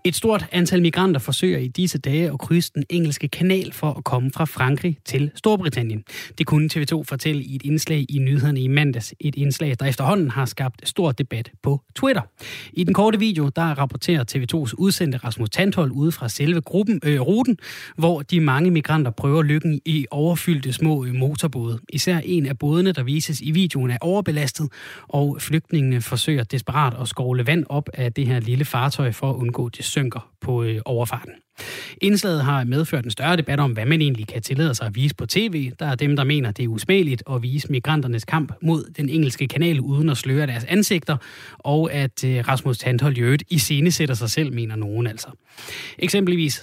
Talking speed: 190 wpm